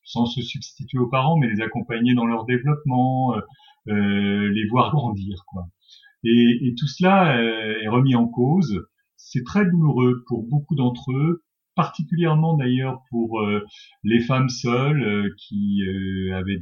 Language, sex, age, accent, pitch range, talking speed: French, male, 40-59, French, 105-140 Hz, 155 wpm